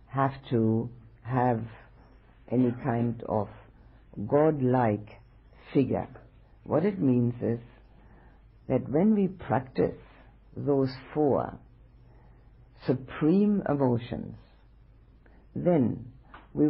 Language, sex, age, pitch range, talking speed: English, female, 60-79, 115-145 Hz, 80 wpm